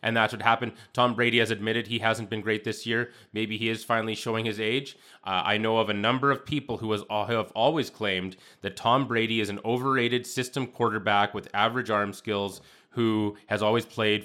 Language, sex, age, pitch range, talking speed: English, male, 20-39, 100-115 Hz, 210 wpm